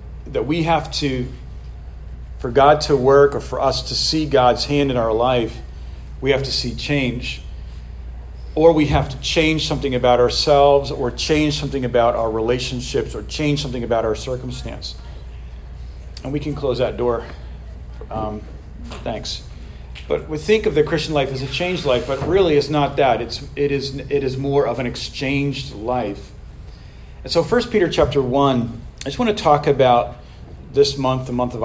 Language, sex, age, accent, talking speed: English, male, 40-59, American, 180 wpm